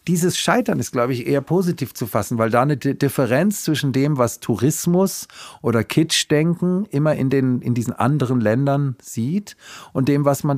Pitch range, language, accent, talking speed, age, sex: 115-140 Hz, German, German, 175 wpm, 50-69, male